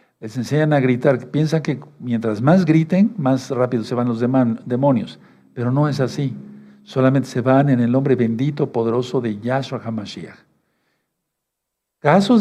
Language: Spanish